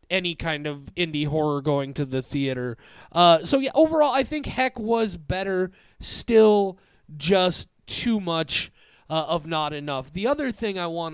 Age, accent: 30-49, American